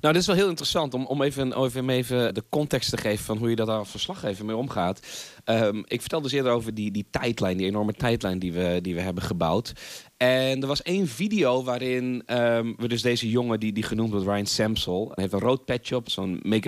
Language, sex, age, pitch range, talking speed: Dutch, male, 30-49, 110-135 Hz, 240 wpm